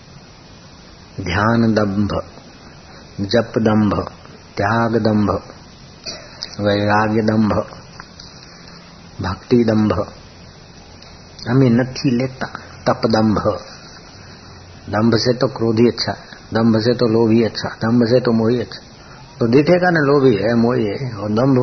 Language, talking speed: Hindi, 110 wpm